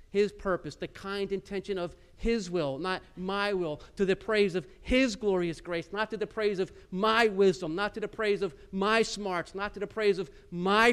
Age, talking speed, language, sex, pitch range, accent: 50-69, 210 wpm, English, male, 170-205 Hz, American